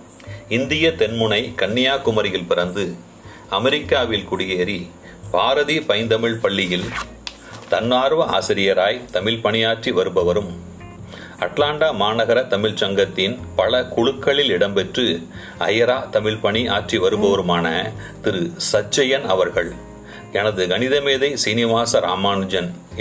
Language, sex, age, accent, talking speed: Tamil, male, 40-59, native, 80 wpm